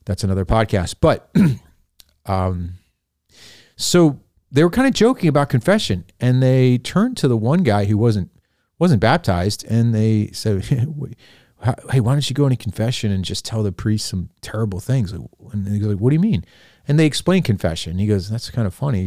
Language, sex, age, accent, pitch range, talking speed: English, male, 40-59, American, 95-120 Hz, 190 wpm